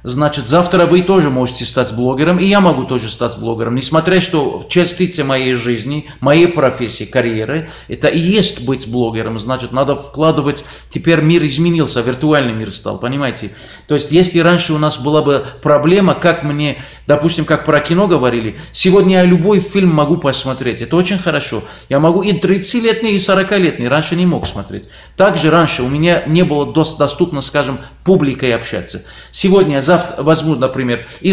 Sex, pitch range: male, 125-175 Hz